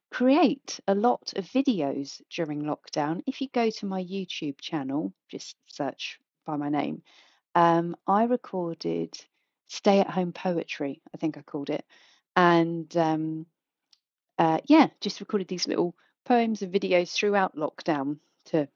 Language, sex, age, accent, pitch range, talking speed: English, female, 40-59, British, 155-200 Hz, 145 wpm